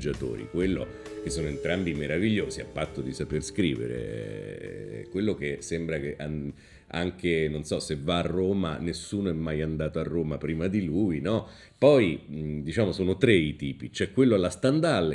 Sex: male